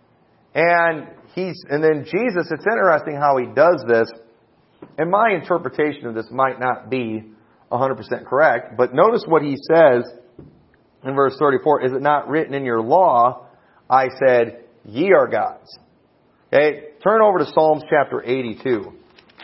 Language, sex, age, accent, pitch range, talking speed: English, male, 40-59, American, 125-170 Hz, 150 wpm